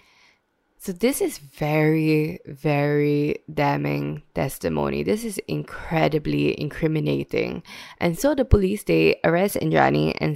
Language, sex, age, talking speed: English, female, 10-29, 110 wpm